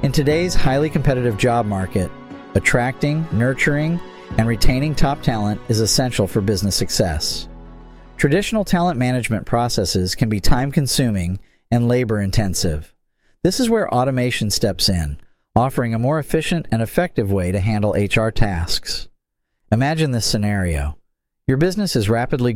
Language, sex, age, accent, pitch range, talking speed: English, male, 40-59, American, 100-135 Hz, 135 wpm